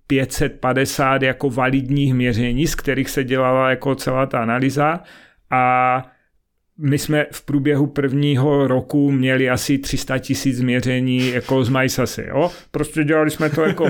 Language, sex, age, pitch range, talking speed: Czech, male, 40-59, 130-150 Hz, 140 wpm